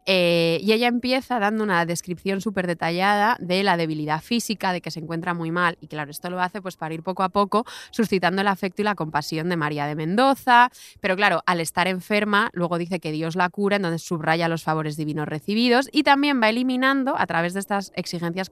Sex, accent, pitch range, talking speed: female, Spanish, 165-210 Hz, 215 wpm